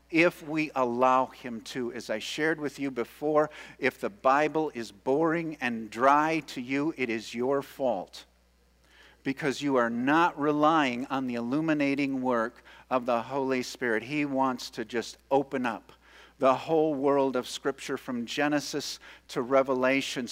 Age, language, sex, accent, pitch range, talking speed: 50-69, English, male, American, 120-155 Hz, 155 wpm